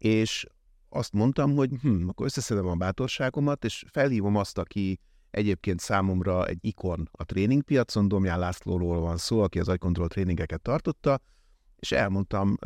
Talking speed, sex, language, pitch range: 140 wpm, male, Hungarian, 90-115 Hz